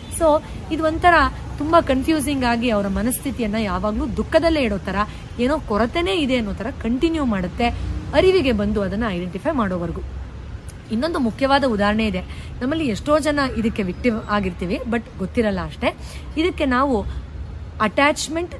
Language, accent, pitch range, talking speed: Kannada, native, 210-275 Hz, 125 wpm